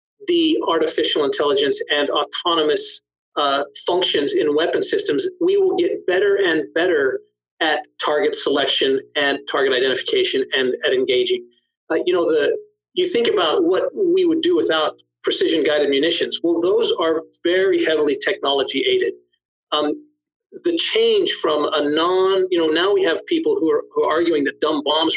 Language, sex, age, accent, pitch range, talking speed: English, male, 40-59, American, 300-425 Hz, 155 wpm